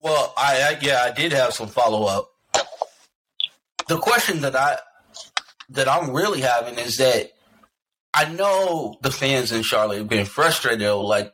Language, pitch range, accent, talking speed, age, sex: English, 115-155 Hz, American, 165 wpm, 30-49, male